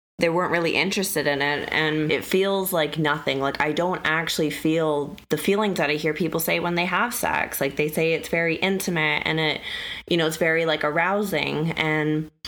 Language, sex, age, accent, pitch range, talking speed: English, female, 20-39, American, 145-170 Hz, 200 wpm